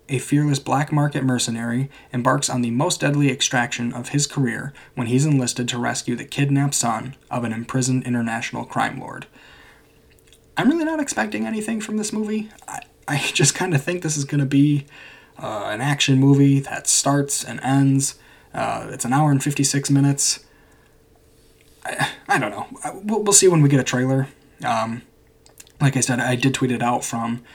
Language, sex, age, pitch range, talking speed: English, male, 20-39, 120-145 Hz, 180 wpm